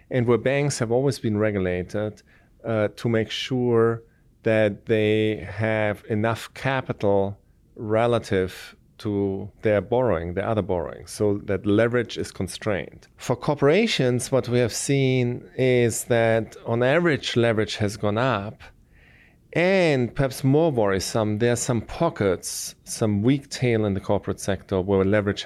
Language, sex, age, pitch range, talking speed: English, male, 30-49, 100-130 Hz, 140 wpm